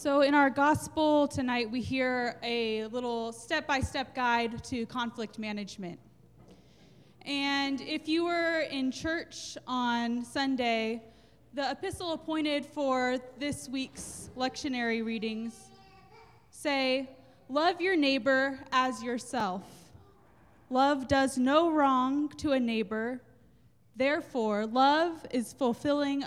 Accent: American